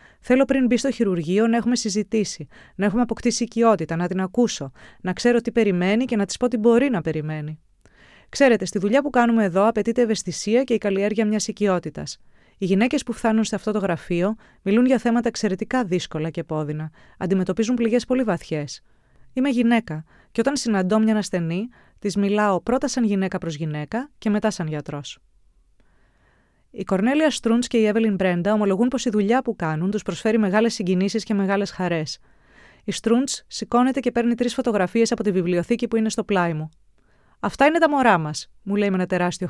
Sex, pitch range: female, 190-245 Hz